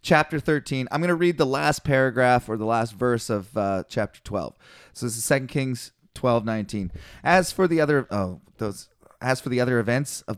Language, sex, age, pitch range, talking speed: English, male, 30-49, 110-135 Hz, 200 wpm